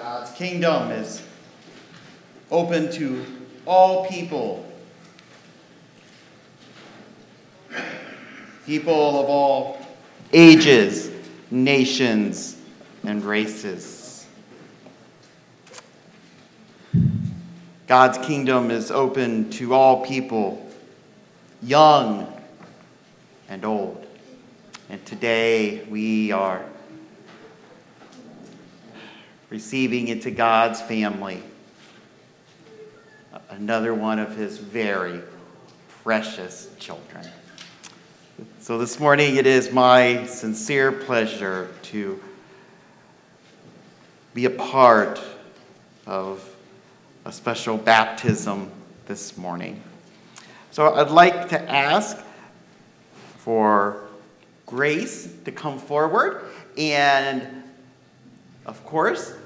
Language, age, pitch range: English, 40-59, 110-145 Hz